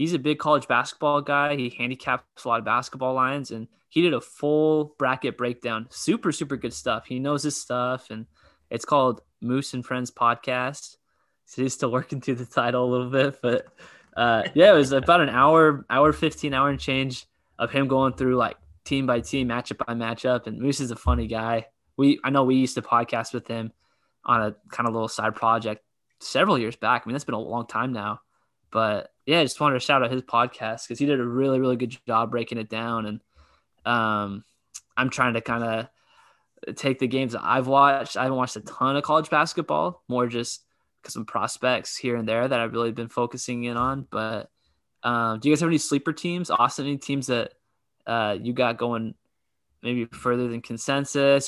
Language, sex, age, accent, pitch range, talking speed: English, male, 20-39, American, 115-140 Hz, 210 wpm